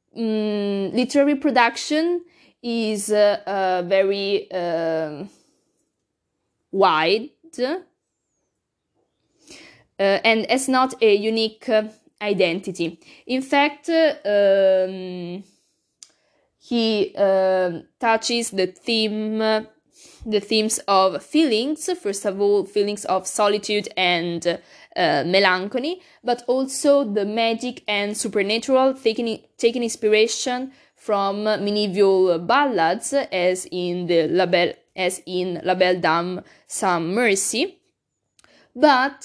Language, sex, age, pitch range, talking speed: Italian, female, 20-39, 195-250 Hz, 100 wpm